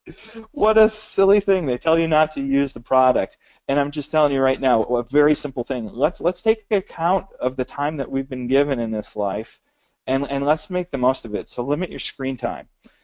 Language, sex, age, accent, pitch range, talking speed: English, male, 30-49, American, 115-155 Hz, 230 wpm